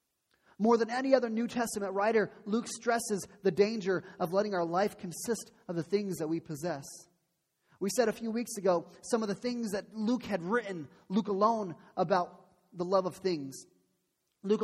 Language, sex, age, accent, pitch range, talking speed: English, male, 30-49, American, 180-230 Hz, 180 wpm